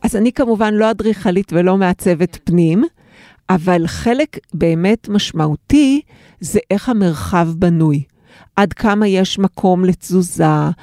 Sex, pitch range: female, 180-225 Hz